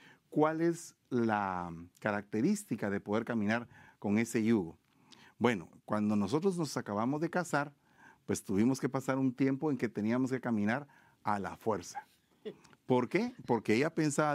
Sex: male